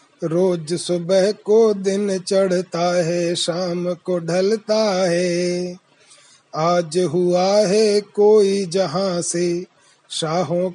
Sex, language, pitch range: male, Hindi, 175-200 Hz